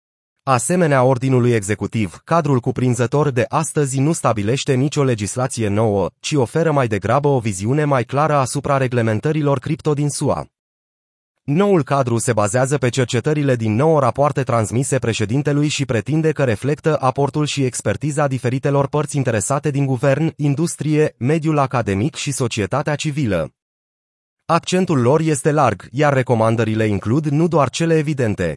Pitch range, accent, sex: 120-150 Hz, native, male